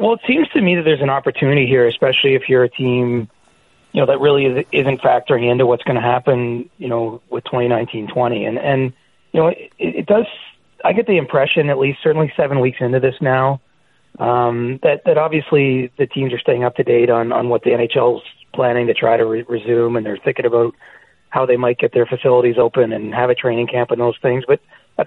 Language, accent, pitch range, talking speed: English, American, 115-135 Hz, 220 wpm